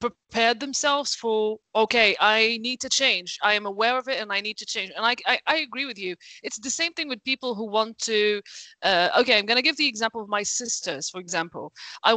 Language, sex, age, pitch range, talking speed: English, female, 30-49, 220-270 Hz, 235 wpm